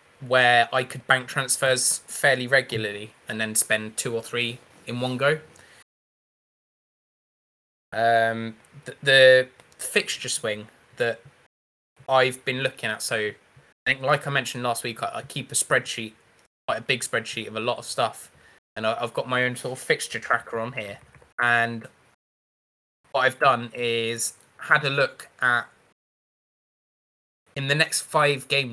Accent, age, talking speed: British, 20-39, 155 wpm